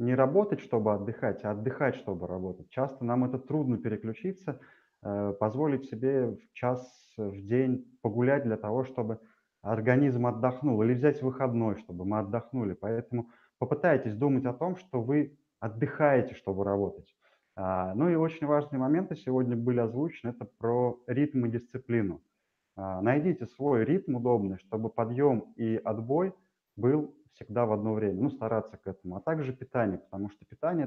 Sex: male